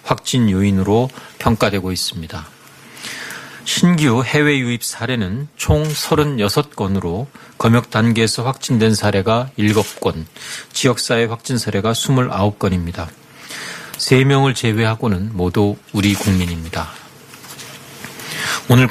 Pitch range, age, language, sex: 100-130 Hz, 40-59, Korean, male